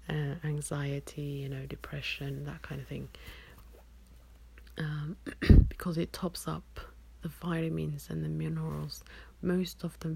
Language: English